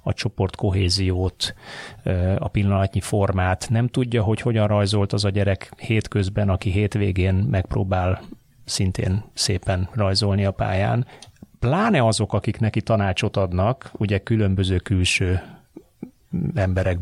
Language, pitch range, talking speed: Hungarian, 95-115 Hz, 115 wpm